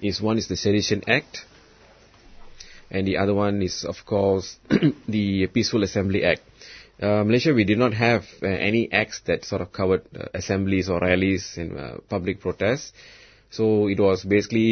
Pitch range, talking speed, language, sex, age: 90-105 Hz, 170 wpm, English, male, 20-39